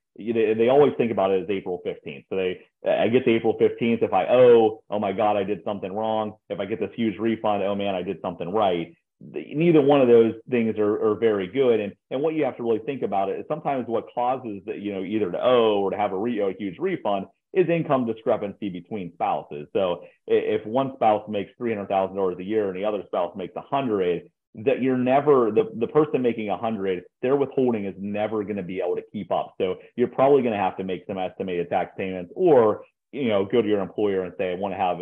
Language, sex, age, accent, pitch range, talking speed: English, male, 30-49, American, 95-120 Hz, 245 wpm